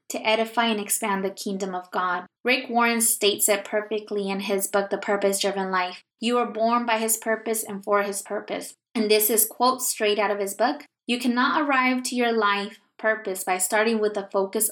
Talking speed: 210 wpm